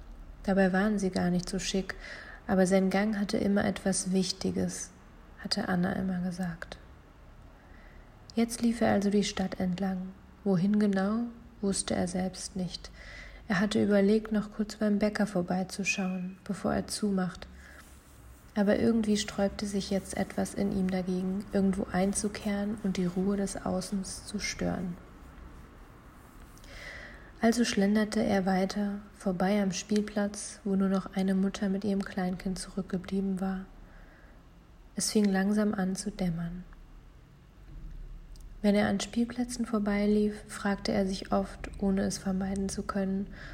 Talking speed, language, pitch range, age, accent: 135 wpm, German, 185-205 Hz, 30-49, German